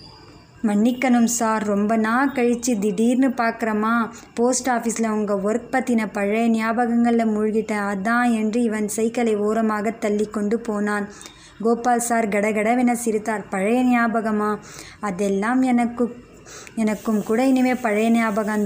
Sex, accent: male, native